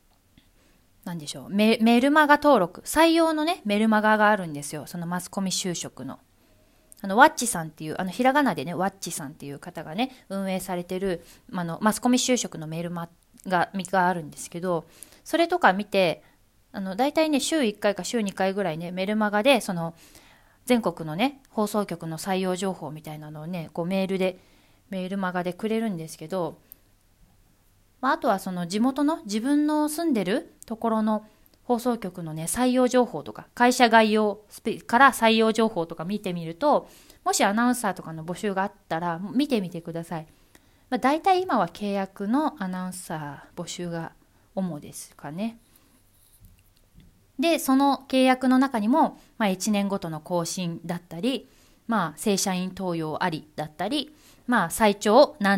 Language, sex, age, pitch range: Japanese, female, 20-39, 170-245 Hz